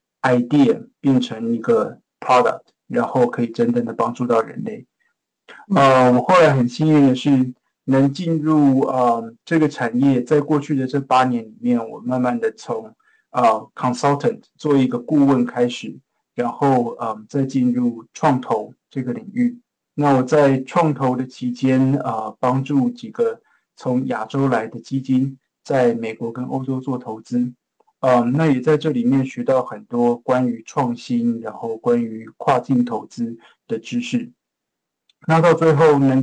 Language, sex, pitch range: Chinese, male, 120-155 Hz